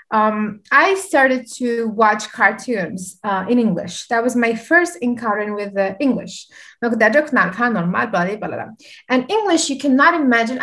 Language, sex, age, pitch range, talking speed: Arabic, female, 20-39, 215-285 Hz, 125 wpm